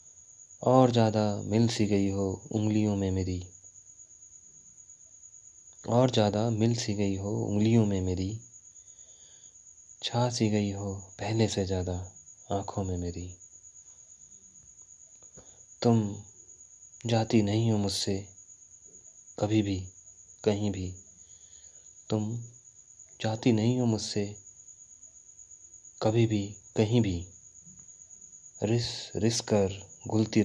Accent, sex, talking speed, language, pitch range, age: native, male, 100 wpm, Hindi, 90-110 Hz, 30-49